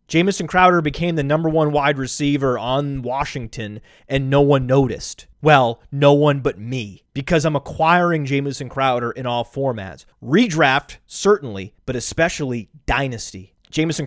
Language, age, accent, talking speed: English, 30-49, American, 140 wpm